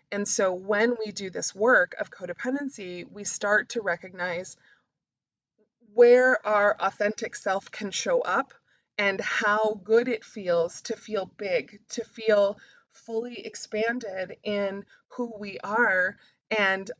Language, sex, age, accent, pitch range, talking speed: English, female, 20-39, American, 190-235 Hz, 130 wpm